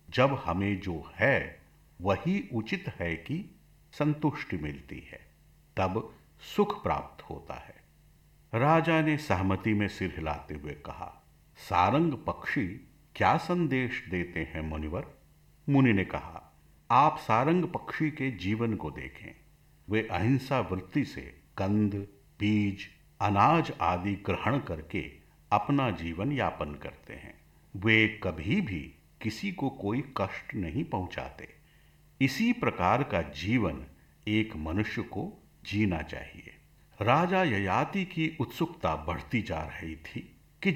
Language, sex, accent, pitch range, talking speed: Hindi, male, native, 85-145 Hz, 120 wpm